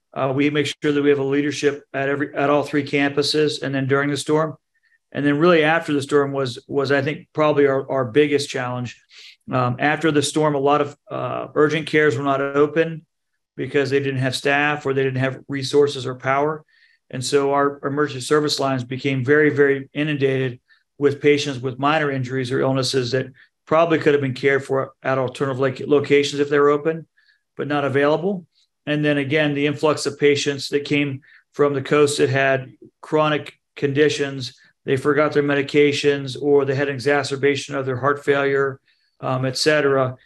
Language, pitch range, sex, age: English, 135-150 Hz, male, 40-59